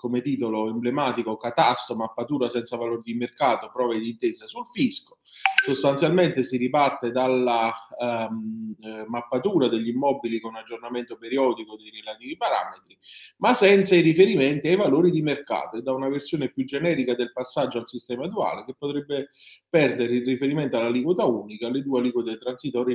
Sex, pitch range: male, 115-140 Hz